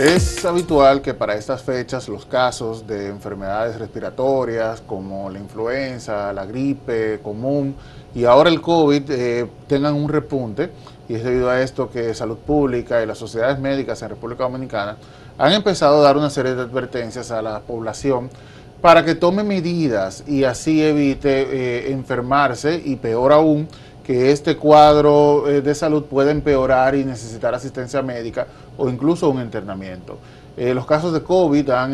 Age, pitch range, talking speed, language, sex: 30-49, 120-145 Hz, 160 wpm, Spanish, male